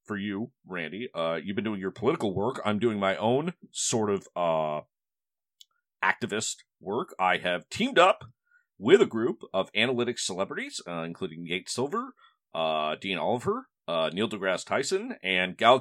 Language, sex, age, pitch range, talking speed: English, male, 40-59, 90-130 Hz, 160 wpm